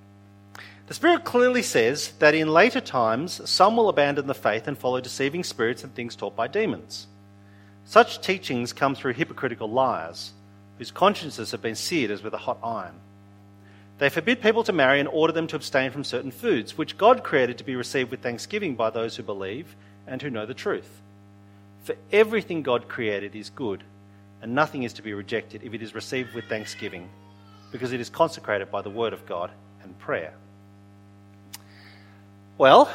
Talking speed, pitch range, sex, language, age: 180 wpm, 100-160 Hz, male, English, 40-59